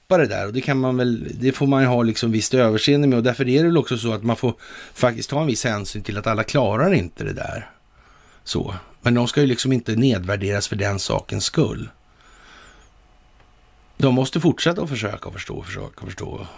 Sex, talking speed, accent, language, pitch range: male, 210 wpm, native, Swedish, 110-135 Hz